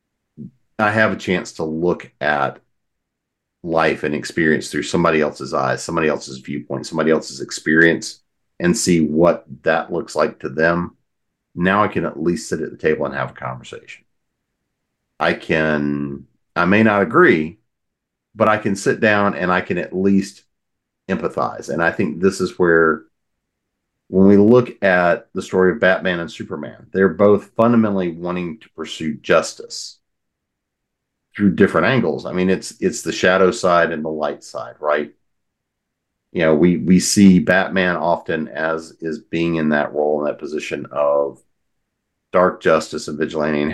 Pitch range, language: 75-95 Hz, English